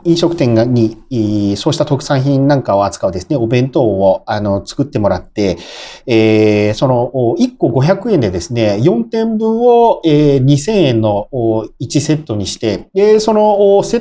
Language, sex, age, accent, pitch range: Japanese, male, 40-59, native, 110-165 Hz